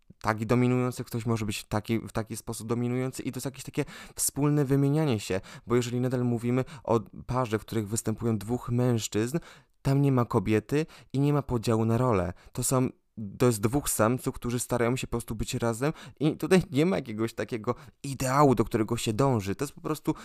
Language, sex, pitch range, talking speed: Polish, male, 110-140 Hz, 195 wpm